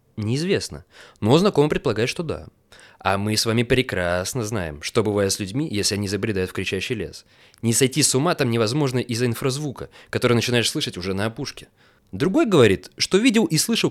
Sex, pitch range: male, 105-160 Hz